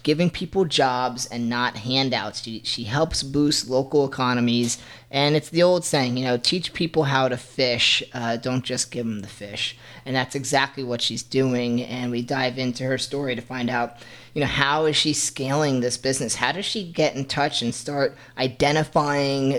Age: 30-49